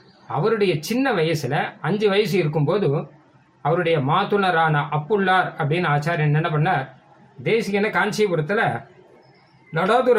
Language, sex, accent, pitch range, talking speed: Tamil, male, native, 150-200 Hz, 95 wpm